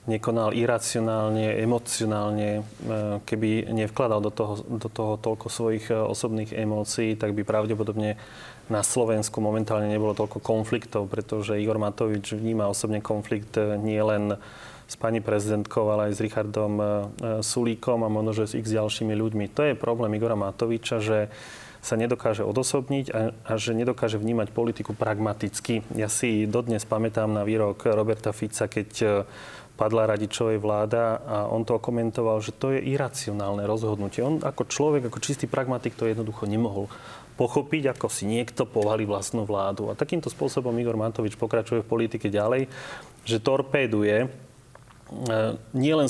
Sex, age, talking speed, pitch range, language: male, 30-49, 140 wpm, 105-120 Hz, Slovak